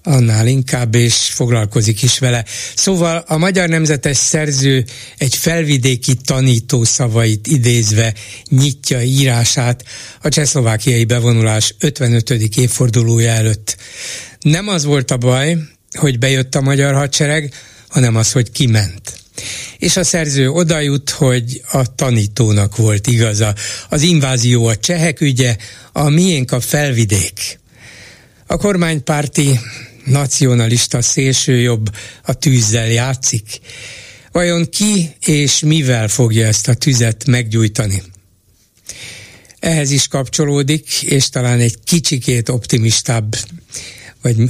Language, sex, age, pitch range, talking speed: Hungarian, male, 60-79, 115-145 Hz, 110 wpm